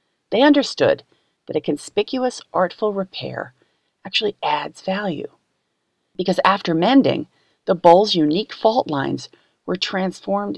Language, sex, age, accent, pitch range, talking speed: English, female, 40-59, American, 150-220 Hz, 115 wpm